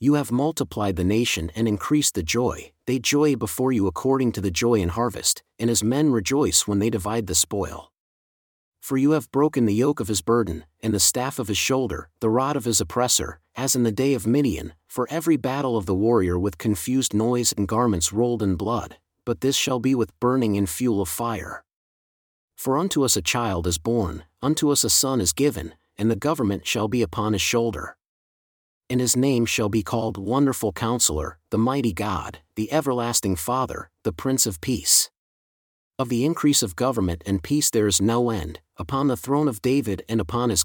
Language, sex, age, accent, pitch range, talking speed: English, male, 40-59, American, 100-130 Hz, 200 wpm